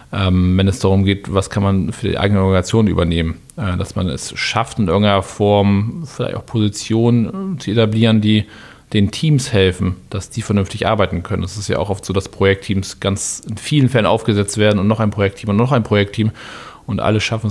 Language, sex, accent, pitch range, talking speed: German, male, German, 100-115 Hz, 205 wpm